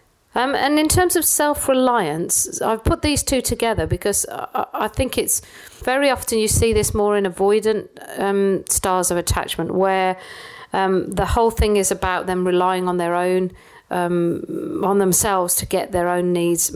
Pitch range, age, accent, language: 180-215 Hz, 50-69, British, English